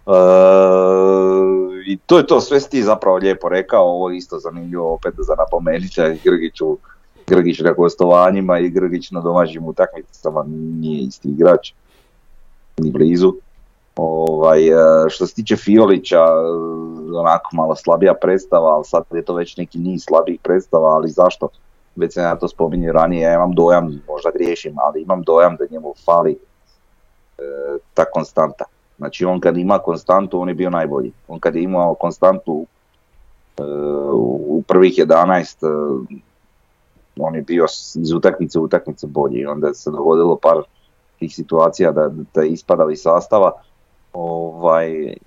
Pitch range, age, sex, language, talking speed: 80-95 Hz, 30-49, male, Croatian, 145 wpm